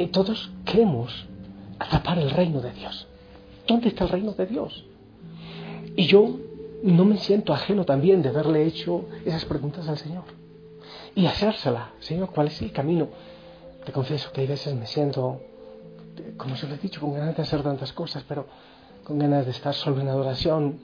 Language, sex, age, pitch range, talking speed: Spanish, male, 40-59, 130-175 Hz, 175 wpm